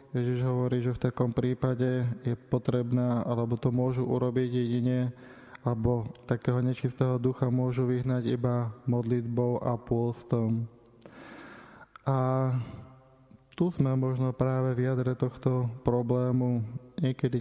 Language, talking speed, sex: Slovak, 115 wpm, male